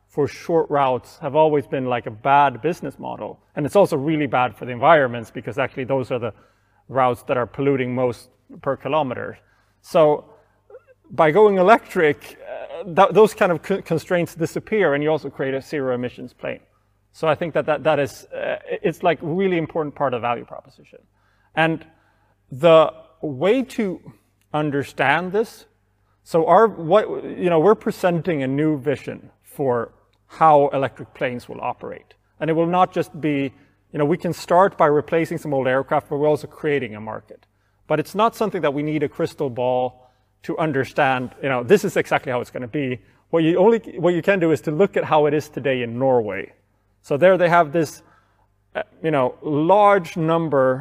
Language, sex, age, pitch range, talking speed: English, male, 30-49, 130-175 Hz, 180 wpm